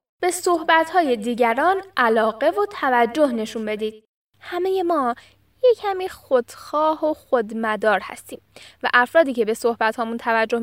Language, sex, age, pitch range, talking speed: Persian, female, 10-29, 230-345 Hz, 120 wpm